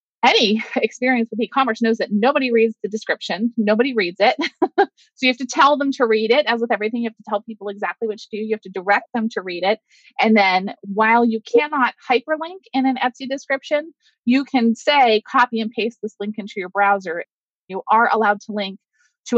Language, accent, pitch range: English, American, 200-255 Hz